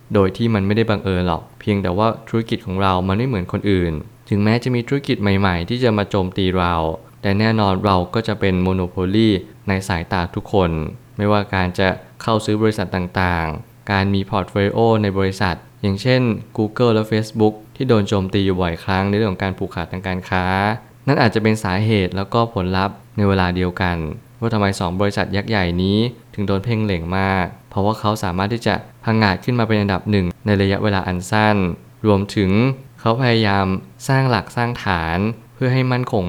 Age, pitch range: 20-39, 95-115 Hz